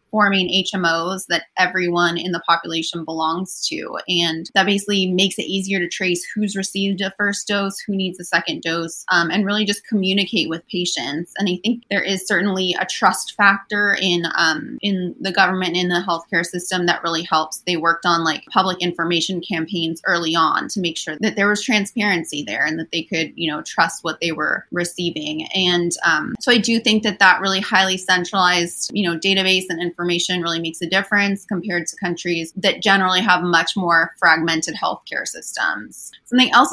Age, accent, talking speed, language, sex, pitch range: 20-39, American, 190 wpm, English, female, 170-200 Hz